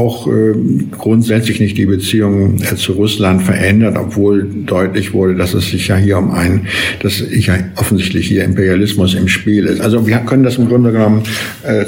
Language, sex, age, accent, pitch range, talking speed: German, male, 60-79, German, 100-110 Hz, 185 wpm